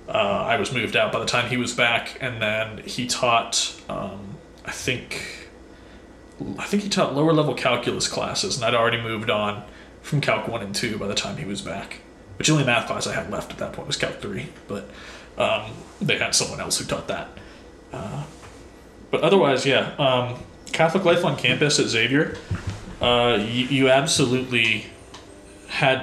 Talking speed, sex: 180 wpm, male